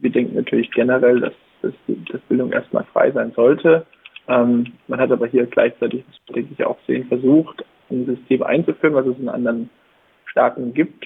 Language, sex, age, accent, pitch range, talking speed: German, male, 20-39, German, 120-140 Hz, 185 wpm